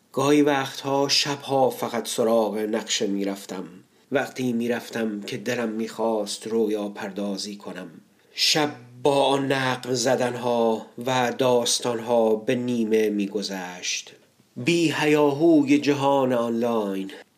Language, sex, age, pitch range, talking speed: Persian, male, 30-49, 105-120 Hz, 105 wpm